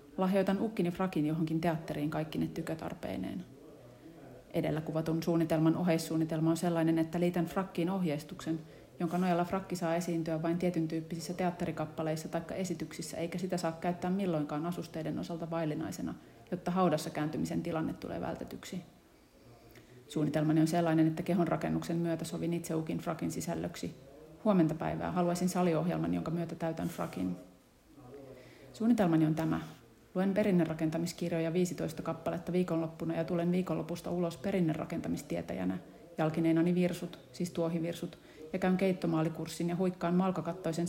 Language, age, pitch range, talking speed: Finnish, 30-49, 160-175 Hz, 125 wpm